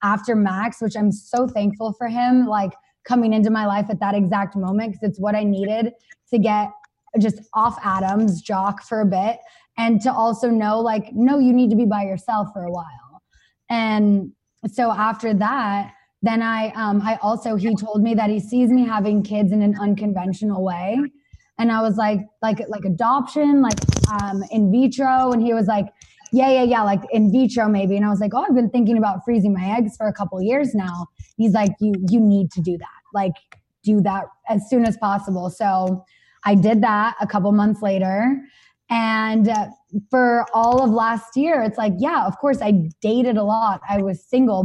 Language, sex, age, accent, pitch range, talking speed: English, female, 20-39, American, 200-230 Hz, 200 wpm